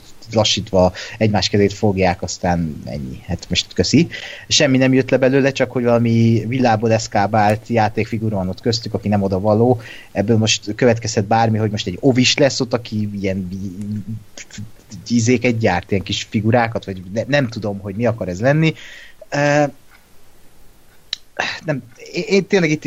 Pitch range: 105-130 Hz